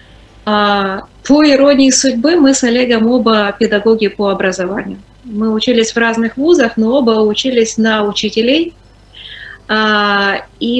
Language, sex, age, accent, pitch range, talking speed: Ukrainian, female, 30-49, native, 200-245 Hz, 115 wpm